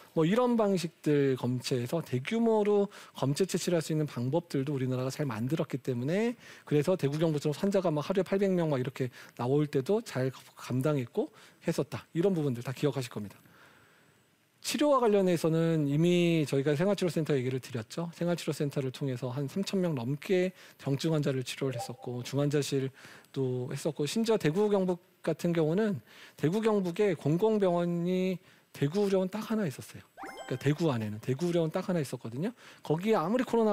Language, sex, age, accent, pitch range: Korean, male, 40-59, native, 140-190 Hz